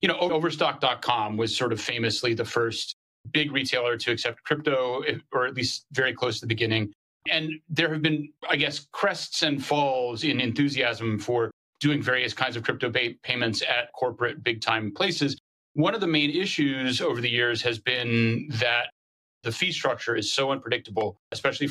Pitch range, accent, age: 120-150 Hz, American, 30-49